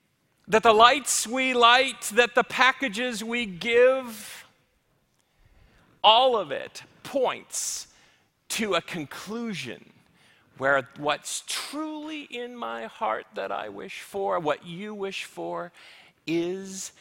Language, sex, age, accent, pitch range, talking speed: English, male, 40-59, American, 135-195 Hz, 115 wpm